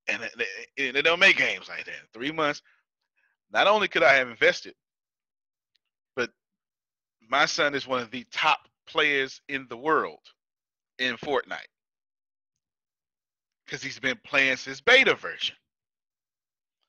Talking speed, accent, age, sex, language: 130 wpm, American, 40-59, male, English